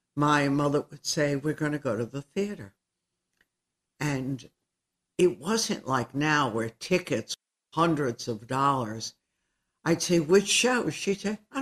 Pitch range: 130-165 Hz